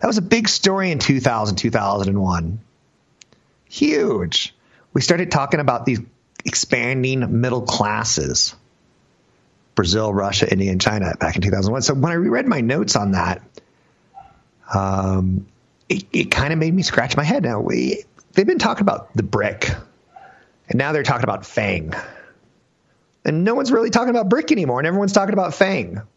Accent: American